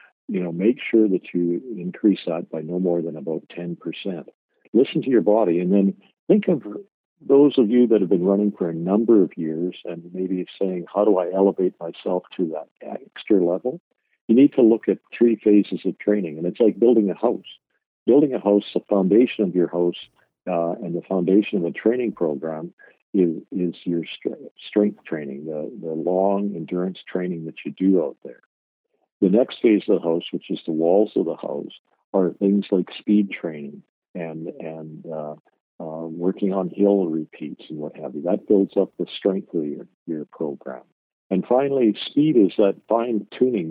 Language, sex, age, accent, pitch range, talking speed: English, male, 60-79, American, 85-105 Hz, 190 wpm